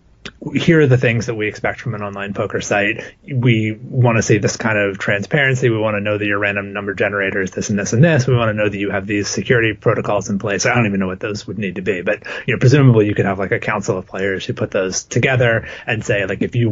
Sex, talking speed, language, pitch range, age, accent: male, 280 wpm, English, 100-115 Hz, 30-49, American